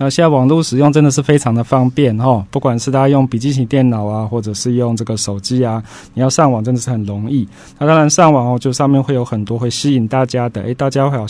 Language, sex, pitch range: Chinese, male, 115-145 Hz